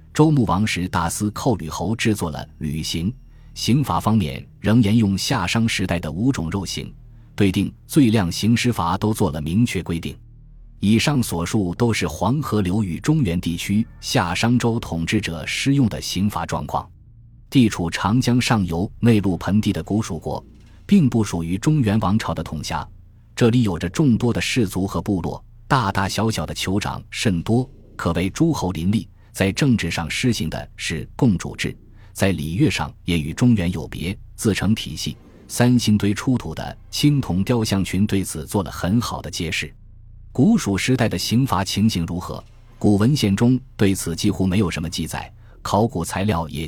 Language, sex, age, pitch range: Chinese, male, 20-39, 85-115 Hz